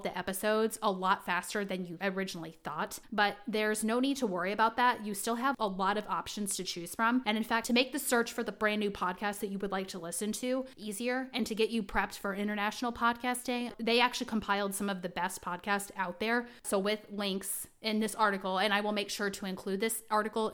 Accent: American